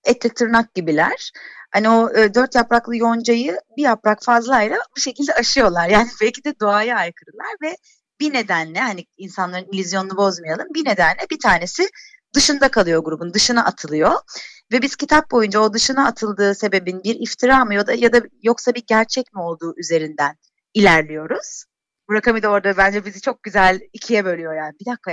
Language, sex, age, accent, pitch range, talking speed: Turkish, female, 30-49, native, 185-260 Hz, 165 wpm